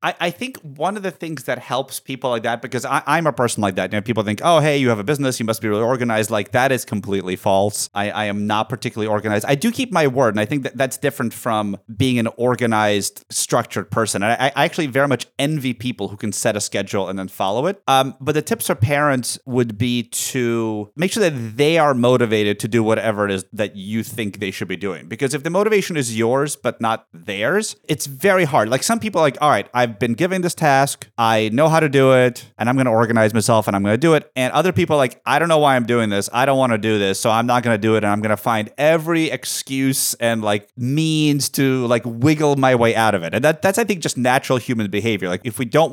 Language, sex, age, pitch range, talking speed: English, male, 30-49, 110-150 Hz, 260 wpm